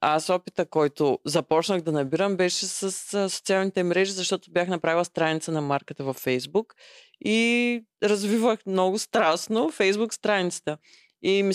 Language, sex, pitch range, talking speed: English, female, 150-205 Hz, 140 wpm